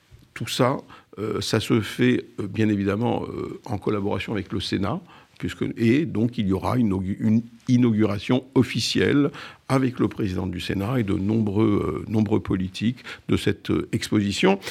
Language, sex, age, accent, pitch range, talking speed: French, male, 50-69, French, 100-125 Hz, 135 wpm